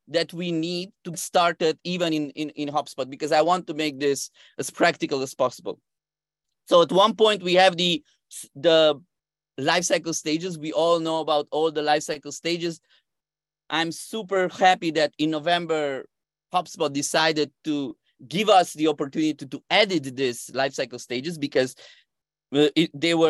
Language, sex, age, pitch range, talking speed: English, male, 30-49, 150-180 Hz, 160 wpm